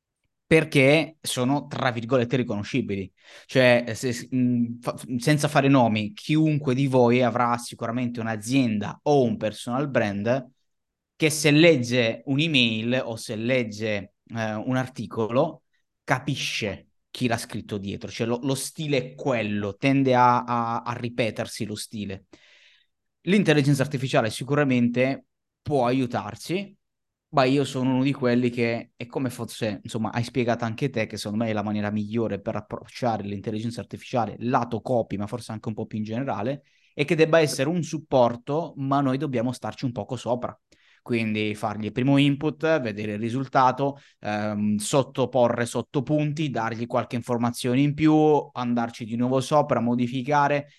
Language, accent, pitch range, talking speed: Italian, native, 110-135 Hz, 145 wpm